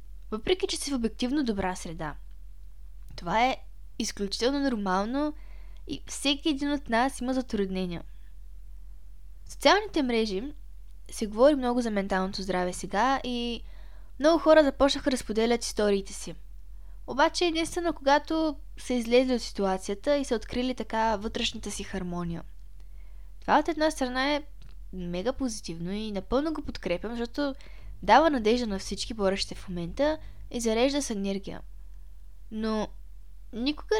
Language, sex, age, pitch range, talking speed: Bulgarian, female, 10-29, 200-275 Hz, 130 wpm